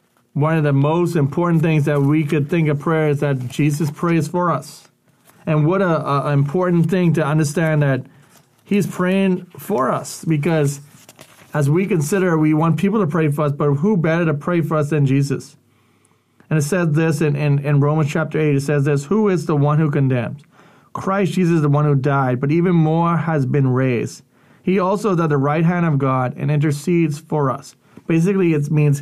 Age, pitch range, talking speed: 30-49, 145-175 Hz, 205 wpm